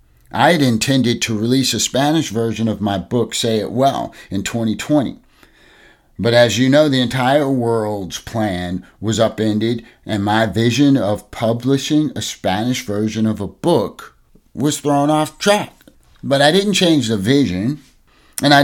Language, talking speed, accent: English, 160 wpm, American